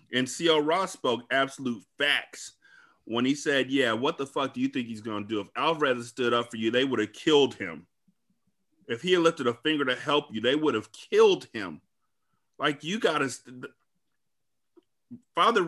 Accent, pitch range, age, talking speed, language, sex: American, 120-150 Hz, 30-49, 190 wpm, English, male